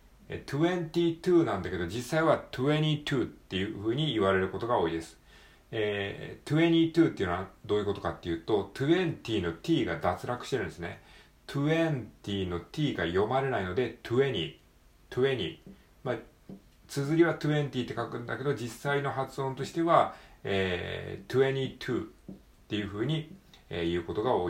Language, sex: Japanese, male